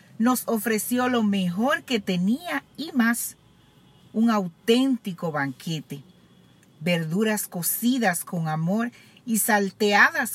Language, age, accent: Spanish, 50-69, American